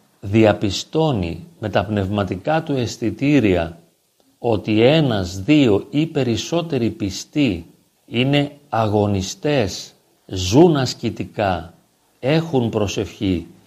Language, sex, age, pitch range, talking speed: Greek, male, 40-59, 100-145 Hz, 80 wpm